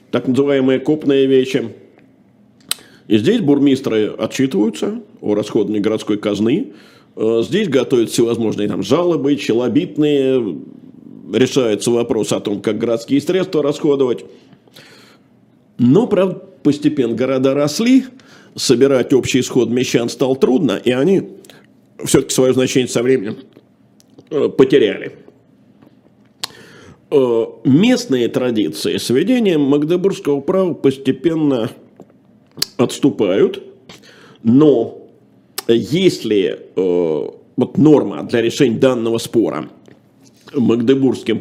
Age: 50-69